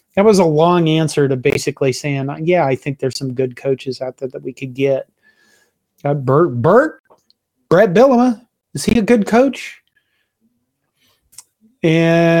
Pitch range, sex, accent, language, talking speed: 145-190 Hz, male, American, English, 155 wpm